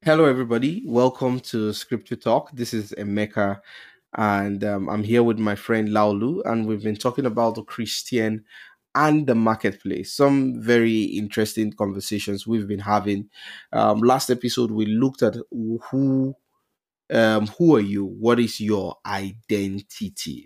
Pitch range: 105-125 Hz